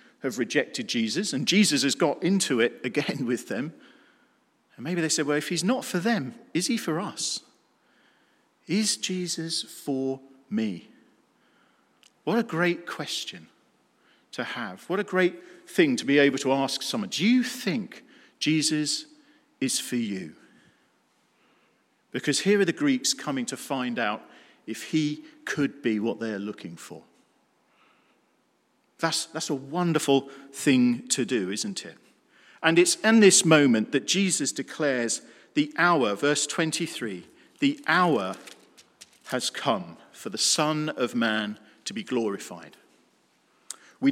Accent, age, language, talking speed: British, 40-59, English, 140 wpm